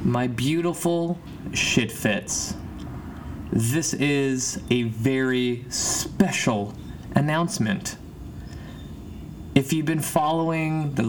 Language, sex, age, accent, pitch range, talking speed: English, male, 20-39, American, 110-145 Hz, 80 wpm